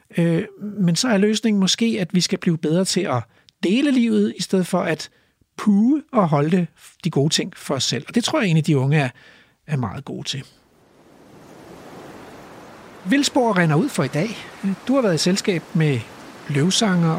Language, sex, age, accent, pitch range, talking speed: Danish, male, 60-79, native, 155-210 Hz, 180 wpm